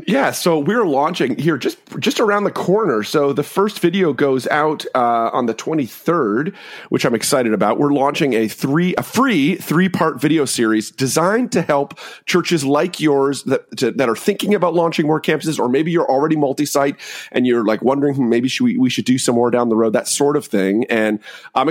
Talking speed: 210 wpm